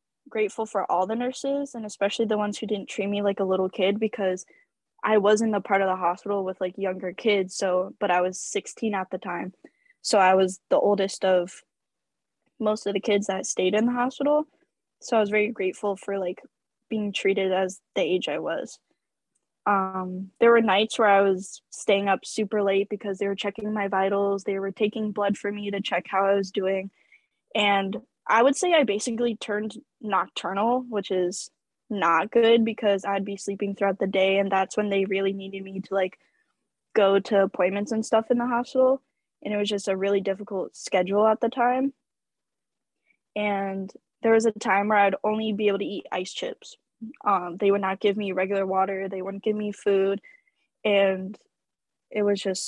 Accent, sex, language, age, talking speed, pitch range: American, female, English, 10-29, 200 wpm, 195-220 Hz